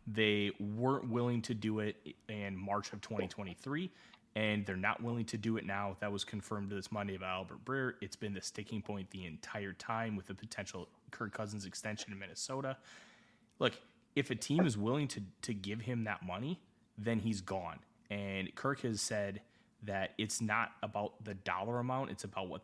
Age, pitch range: 20-39, 95-115 Hz